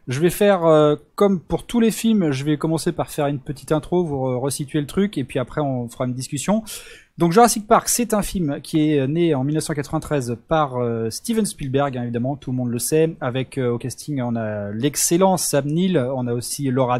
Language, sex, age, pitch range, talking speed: French, male, 20-39, 130-175 Hz, 220 wpm